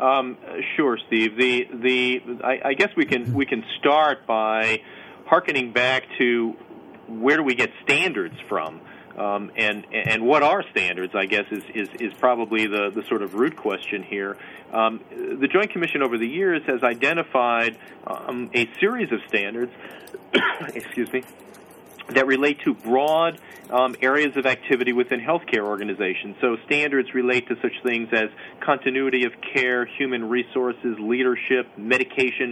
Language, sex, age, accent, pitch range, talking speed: English, male, 40-59, American, 110-130 Hz, 155 wpm